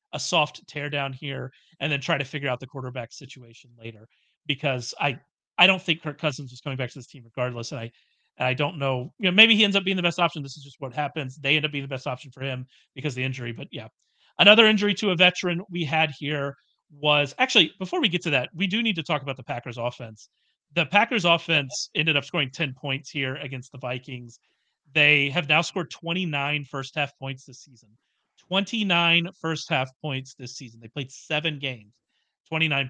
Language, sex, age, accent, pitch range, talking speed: English, male, 40-59, American, 135-170 Hz, 220 wpm